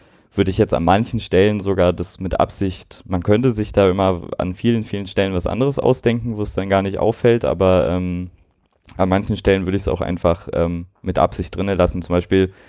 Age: 20-39